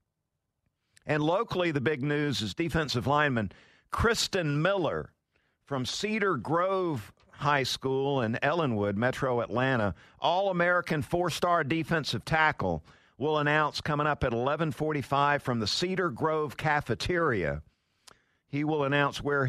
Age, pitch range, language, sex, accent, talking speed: 50-69, 120-165 Hz, English, male, American, 115 wpm